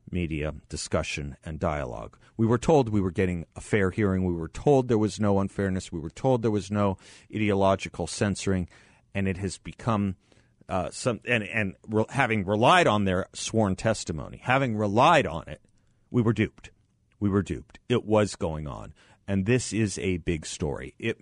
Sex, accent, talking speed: male, American, 180 wpm